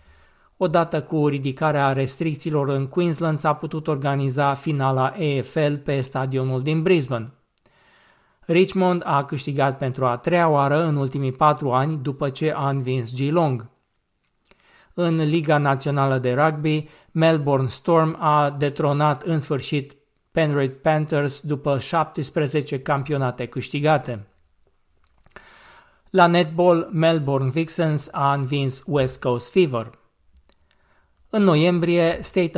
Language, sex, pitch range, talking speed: Romanian, male, 135-160 Hz, 110 wpm